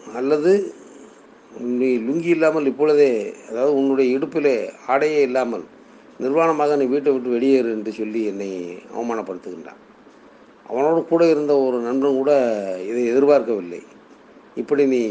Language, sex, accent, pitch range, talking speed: Tamil, male, native, 115-140 Hz, 110 wpm